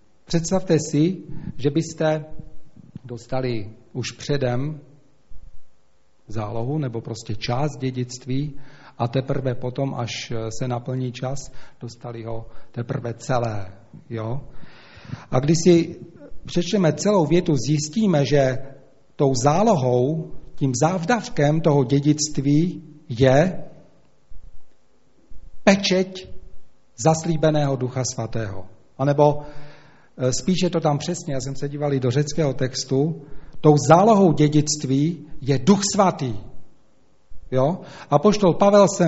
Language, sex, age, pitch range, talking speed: Czech, male, 40-59, 130-175 Hz, 100 wpm